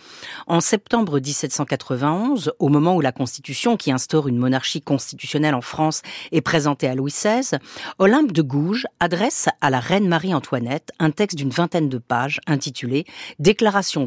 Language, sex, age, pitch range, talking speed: French, female, 50-69, 140-195 Hz, 160 wpm